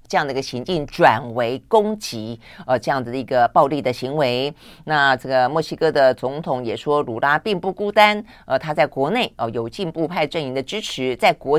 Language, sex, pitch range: Chinese, female, 125-165 Hz